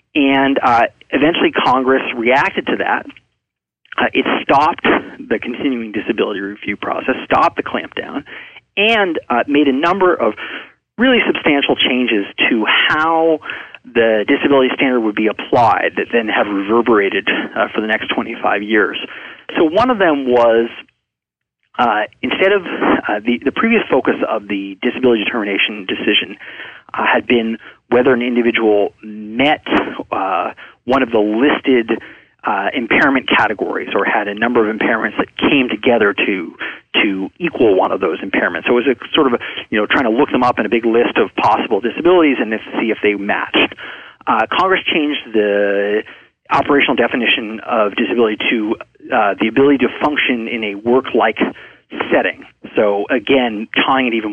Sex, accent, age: male, American, 40-59